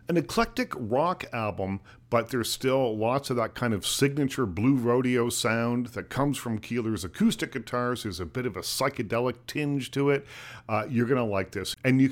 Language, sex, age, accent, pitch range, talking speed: English, male, 50-69, American, 105-135 Hz, 195 wpm